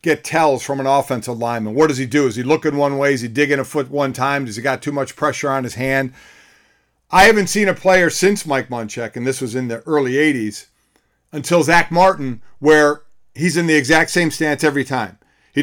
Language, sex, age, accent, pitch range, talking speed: English, male, 50-69, American, 135-190 Hz, 225 wpm